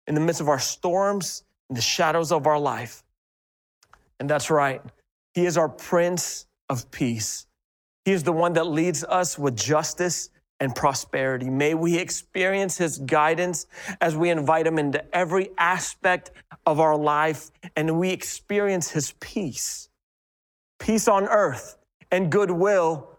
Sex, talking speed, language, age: male, 145 wpm, English, 30-49